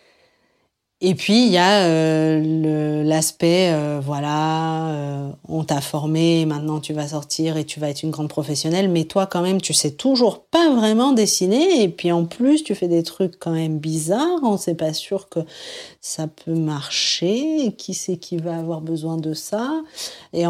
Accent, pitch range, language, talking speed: French, 160-205 Hz, French, 185 wpm